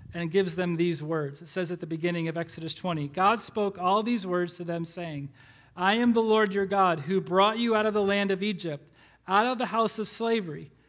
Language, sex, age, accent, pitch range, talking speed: English, male, 40-59, American, 180-235 Hz, 230 wpm